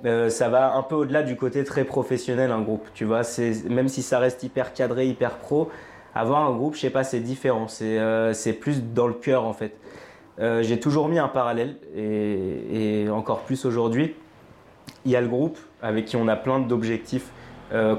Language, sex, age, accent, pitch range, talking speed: French, male, 20-39, French, 110-125 Hz, 210 wpm